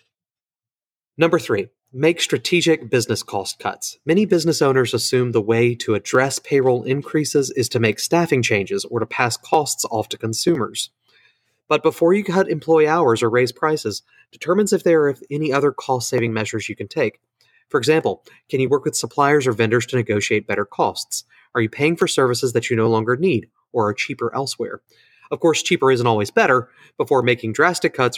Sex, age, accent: male, 30-49, American